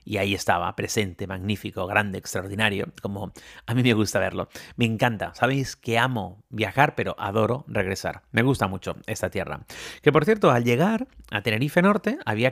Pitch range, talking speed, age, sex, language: 105-155 Hz, 175 wpm, 30-49, male, Spanish